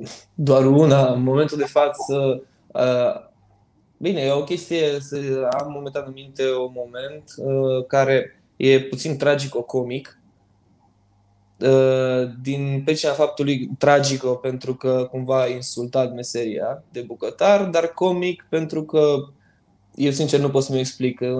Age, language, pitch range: 20-39, Romanian, 125-155 Hz